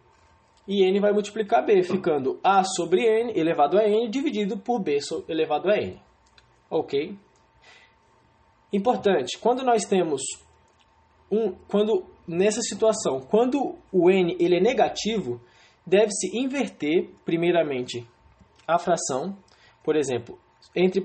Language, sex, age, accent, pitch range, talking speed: English, male, 20-39, Brazilian, 155-225 Hz, 120 wpm